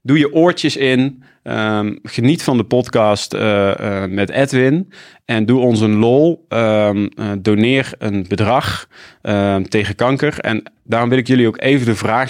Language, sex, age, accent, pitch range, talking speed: Dutch, male, 30-49, Dutch, 100-125 Hz, 160 wpm